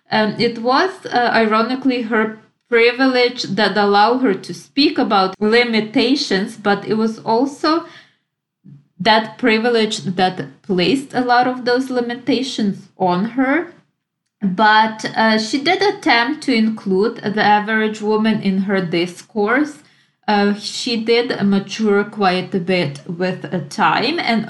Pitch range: 200-245 Hz